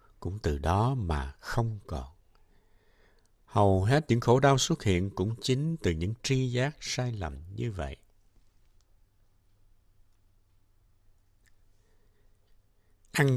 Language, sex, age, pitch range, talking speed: Vietnamese, male, 60-79, 85-120 Hz, 110 wpm